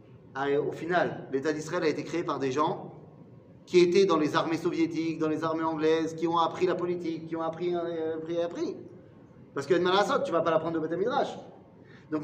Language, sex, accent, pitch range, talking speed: French, male, French, 155-235 Hz, 225 wpm